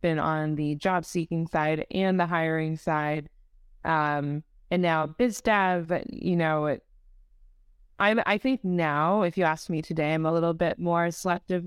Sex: female